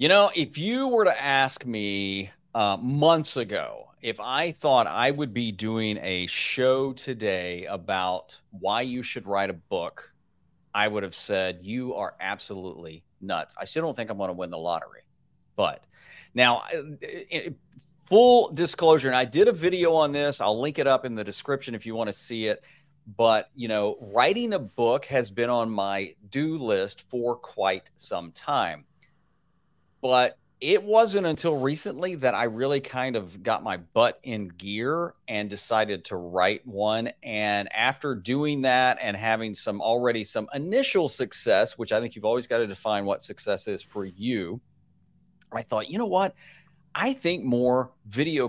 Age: 40-59